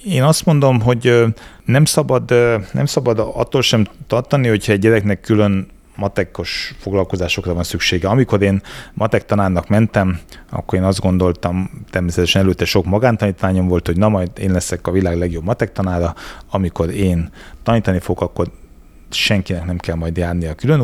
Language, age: Hungarian, 30-49